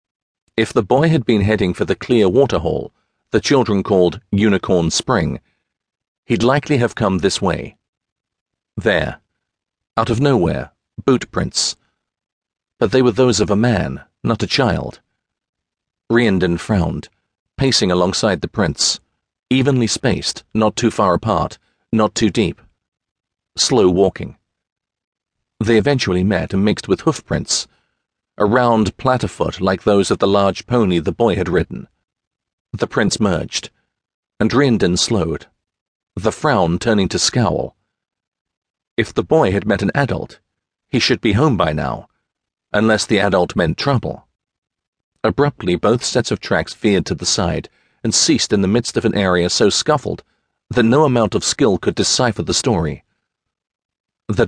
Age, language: 40-59, English